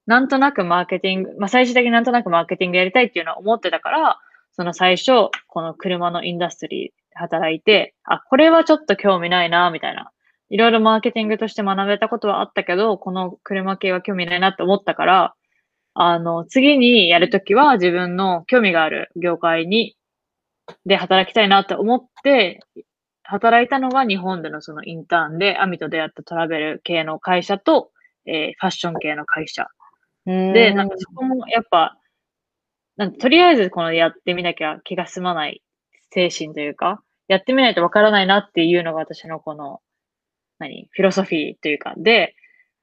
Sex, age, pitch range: female, 20-39, 175-225 Hz